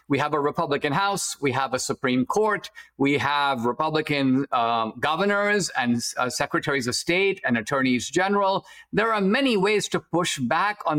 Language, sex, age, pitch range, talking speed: English, male, 50-69, 155-200 Hz, 170 wpm